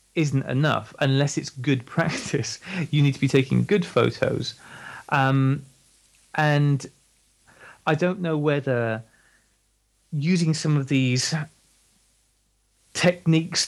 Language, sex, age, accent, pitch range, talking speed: English, male, 30-49, British, 120-150 Hz, 105 wpm